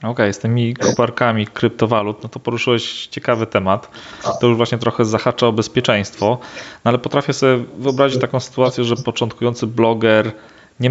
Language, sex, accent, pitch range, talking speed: Polish, male, native, 105-125 Hz, 160 wpm